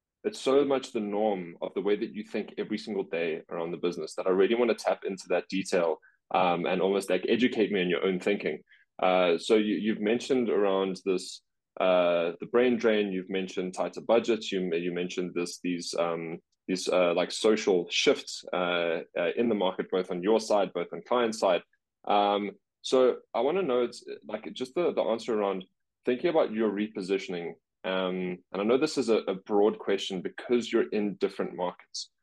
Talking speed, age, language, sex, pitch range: 200 wpm, 20-39, English, male, 90-110 Hz